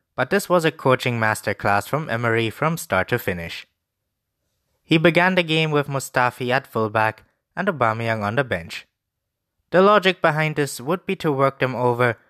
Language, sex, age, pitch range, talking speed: English, male, 20-39, 110-155 Hz, 170 wpm